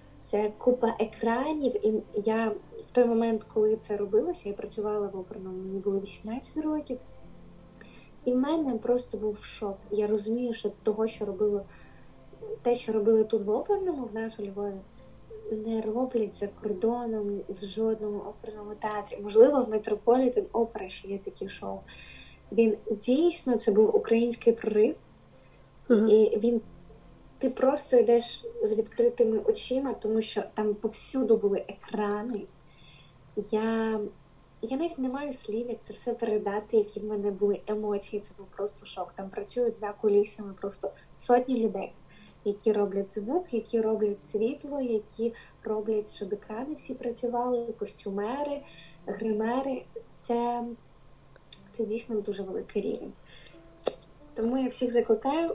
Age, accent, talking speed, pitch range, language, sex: 20-39, native, 135 wpm, 205-240 Hz, Ukrainian, female